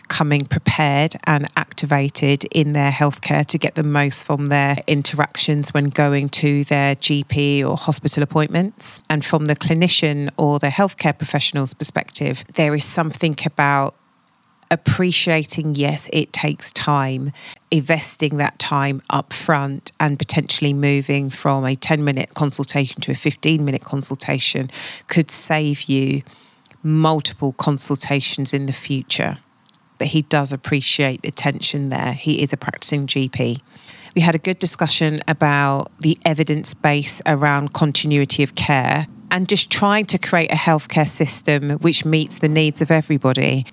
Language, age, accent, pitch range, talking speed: English, 40-59, British, 140-160 Hz, 140 wpm